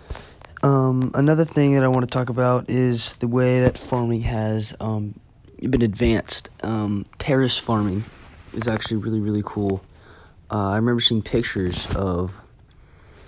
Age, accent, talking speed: 20-39, American, 145 wpm